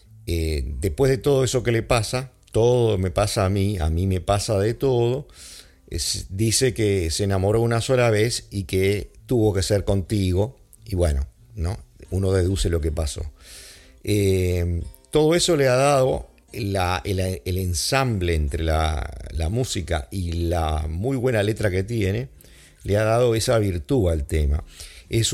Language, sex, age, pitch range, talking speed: English, male, 50-69, 85-110 Hz, 160 wpm